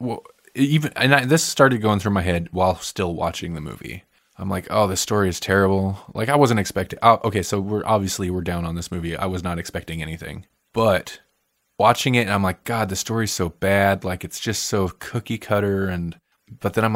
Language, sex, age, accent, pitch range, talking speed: English, male, 20-39, American, 85-105 Hz, 220 wpm